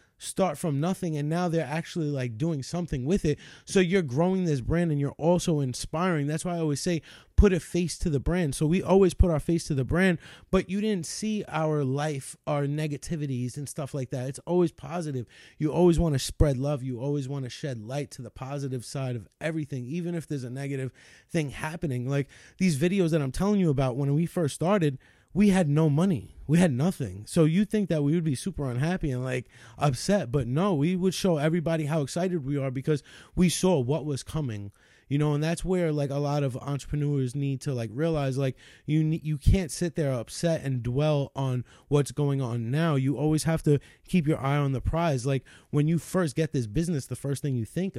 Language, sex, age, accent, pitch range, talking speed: English, male, 20-39, American, 135-170 Hz, 225 wpm